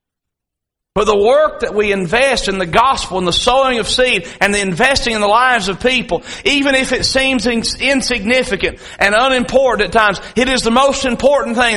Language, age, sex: English, 40-59, male